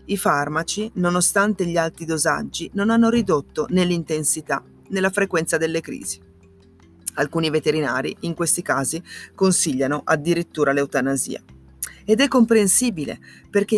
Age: 30-49